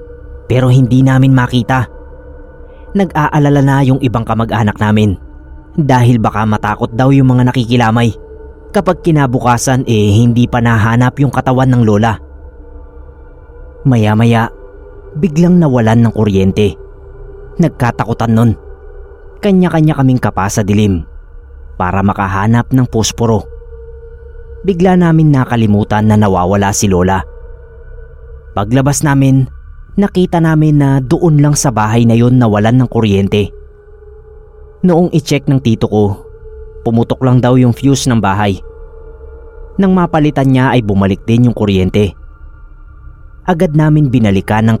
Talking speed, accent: 115 wpm, Filipino